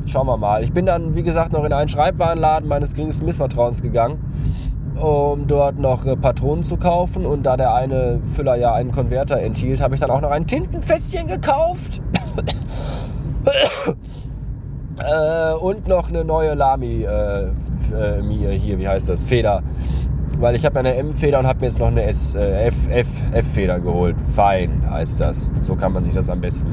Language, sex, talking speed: German, male, 180 wpm